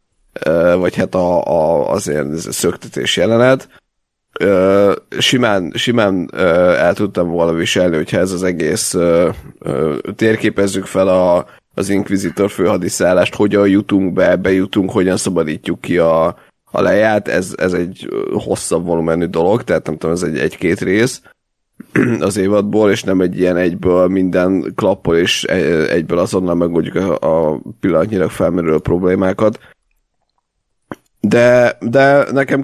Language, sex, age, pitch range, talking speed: Hungarian, male, 30-49, 90-110 Hz, 125 wpm